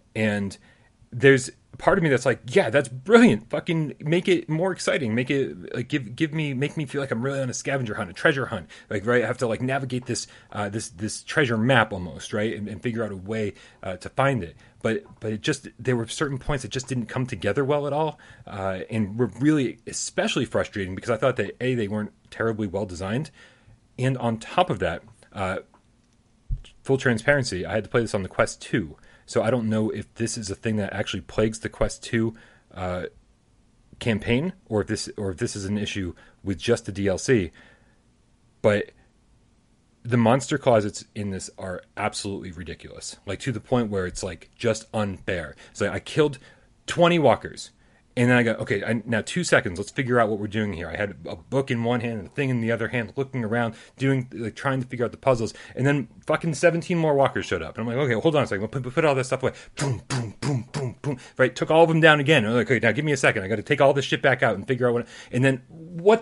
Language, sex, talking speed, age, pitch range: English, male, 240 wpm, 30-49, 110-140 Hz